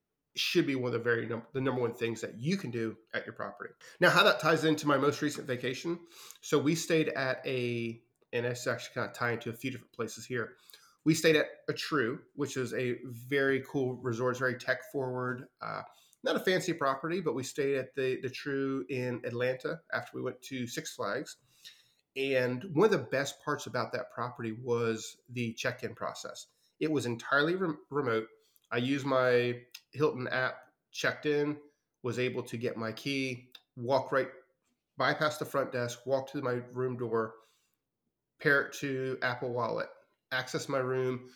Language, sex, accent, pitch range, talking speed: English, male, American, 120-140 Hz, 185 wpm